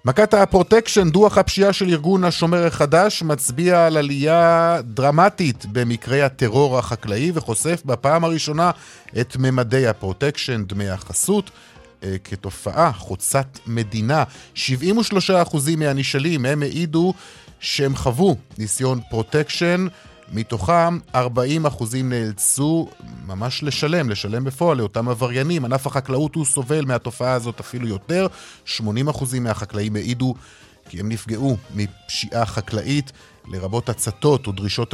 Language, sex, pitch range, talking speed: Hebrew, male, 110-155 Hz, 105 wpm